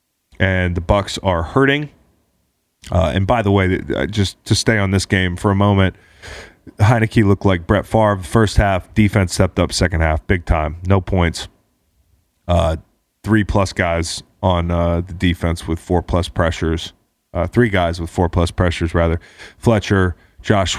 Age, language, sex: 30-49, English, male